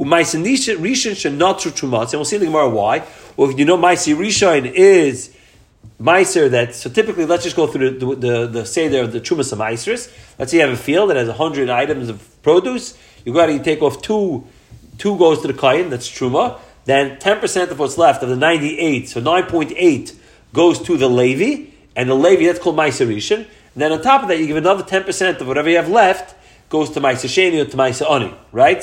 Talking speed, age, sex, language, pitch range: 215 wpm, 40-59, male, English, 135-190 Hz